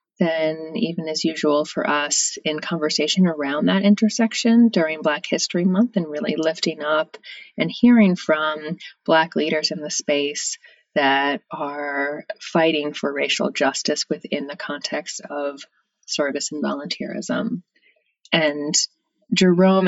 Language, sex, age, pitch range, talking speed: English, female, 30-49, 155-210 Hz, 125 wpm